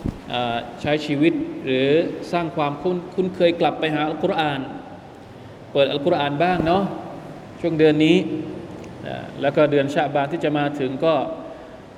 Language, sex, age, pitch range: Thai, male, 20-39, 140-170 Hz